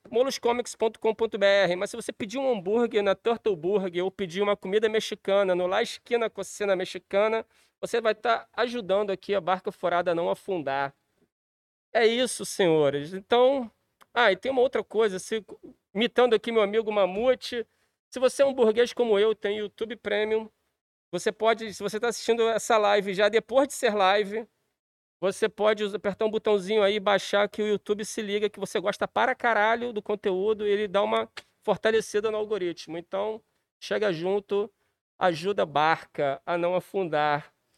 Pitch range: 195-230 Hz